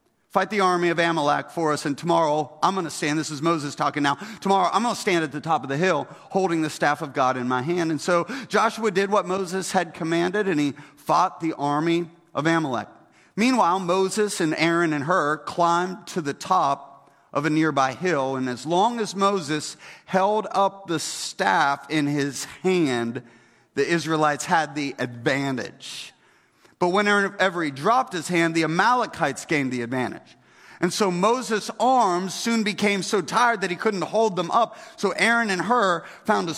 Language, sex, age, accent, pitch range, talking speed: English, male, 40-59, American, 165-210 Hz, 185 wpm